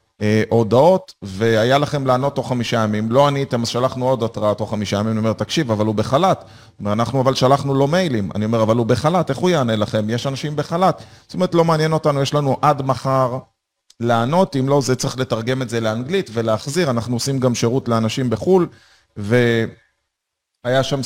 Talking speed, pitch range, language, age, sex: 180 wpm, 115-145 Hz, Hebrew, 30-49, male